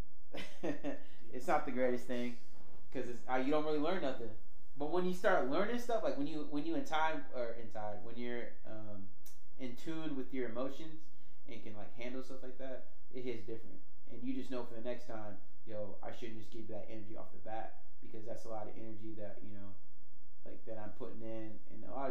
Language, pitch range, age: English, 105-130 Hz, 20-39